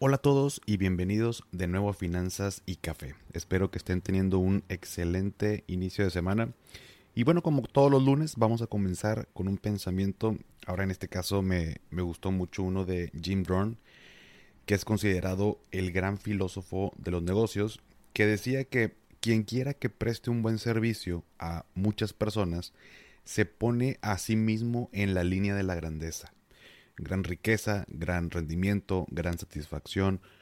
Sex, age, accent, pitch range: male, 30-49, Mexican, 90-110 Hz